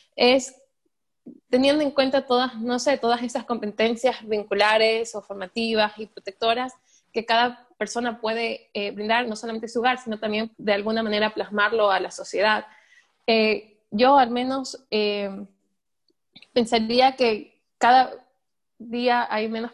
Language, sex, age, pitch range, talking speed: Spanish, female, 20-39, 210-245 Hz, 140 wpm